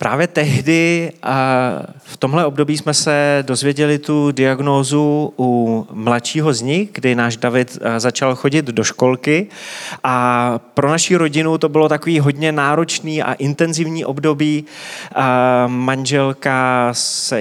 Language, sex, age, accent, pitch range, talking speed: Czech, male, 30-49, native, 125-160 Hz, 120 wpm